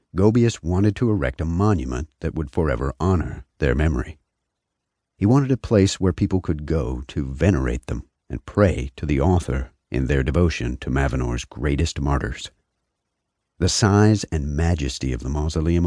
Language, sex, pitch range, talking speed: English, male, 65-90 Hz, 160 wpm